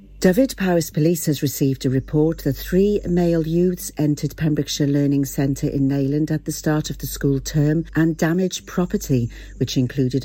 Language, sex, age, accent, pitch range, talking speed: English, female, 50-69, British, 135-170 Hz, 170 wpm